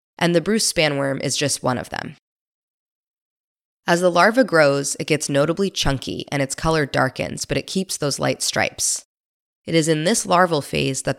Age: 20-39